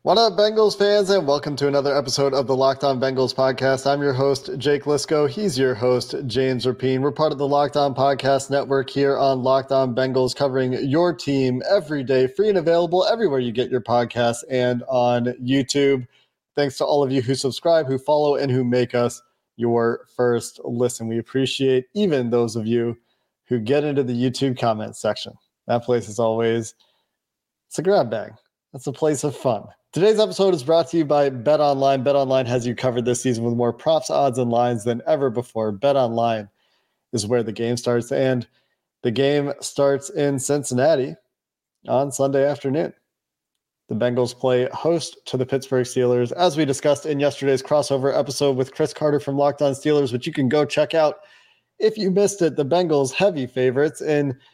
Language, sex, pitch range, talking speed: English, male, 125-145 Hz, 185 wpm